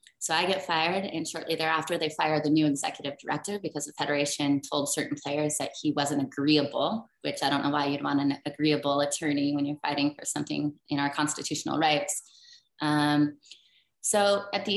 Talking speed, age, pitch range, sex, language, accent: 185 wpm, 20-39, 145-165 Hz, female, English, American